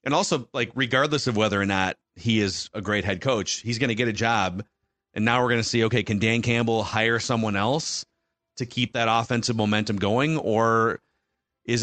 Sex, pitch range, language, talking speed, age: male, 110-140 Hz, English, 210 wpm, 30-49